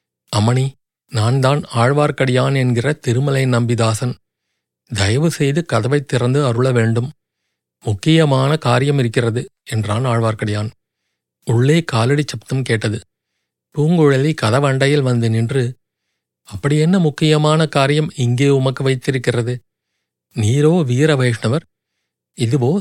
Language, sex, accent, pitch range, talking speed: Tamil, male, native, 115-145 Hz, 95 wpm